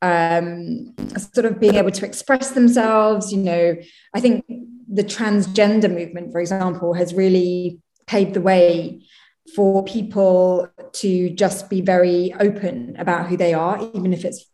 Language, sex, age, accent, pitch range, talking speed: English, female, 20-39, British, 180-240 Hz, 150 wpm